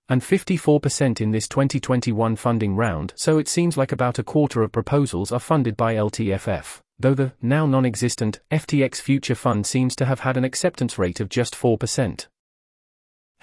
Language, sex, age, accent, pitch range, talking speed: English, male, 30-49, British, 110-140 Hz, 170 wpm